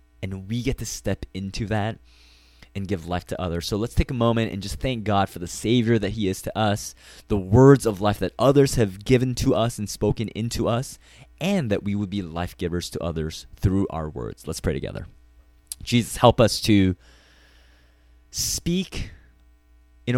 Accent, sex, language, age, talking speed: American, male, English, 20-39, 190 wpm